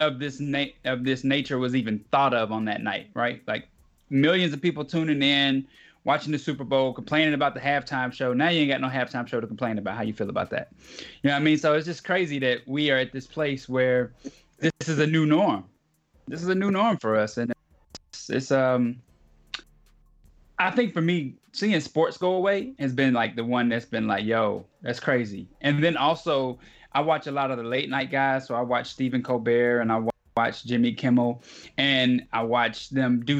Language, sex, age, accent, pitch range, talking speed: English, male, 20-39, American, 120-150 Hz, 220 wpm